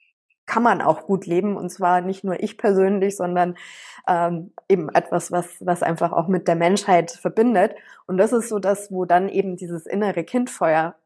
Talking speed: 185 wpm